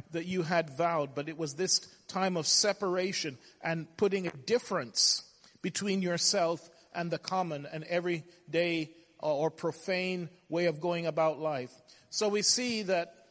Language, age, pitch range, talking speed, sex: English, 40-59, 160-195 Hz, 150 wpm, male